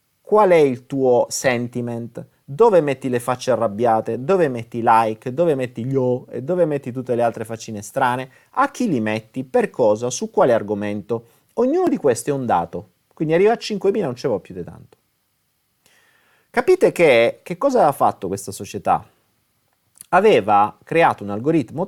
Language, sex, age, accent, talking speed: Italian, male, 30-49, native, 175 wpm